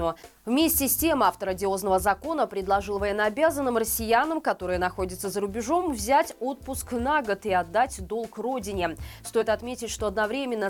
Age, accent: 20-39, native